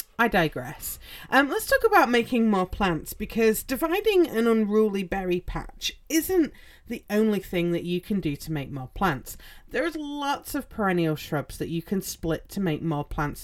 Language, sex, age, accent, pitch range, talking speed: English, female, 30-49, British, 155-225 Hz, 185 wpm